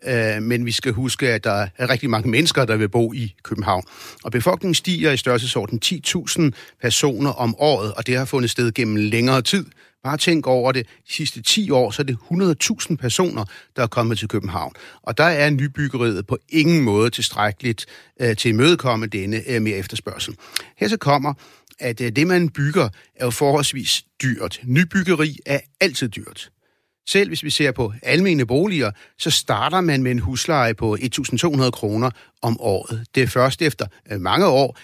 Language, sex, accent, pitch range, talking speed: Danish, male, native, 115-145 Hz, 175 wpm